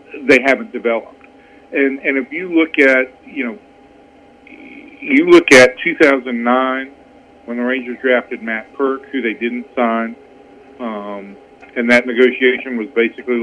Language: English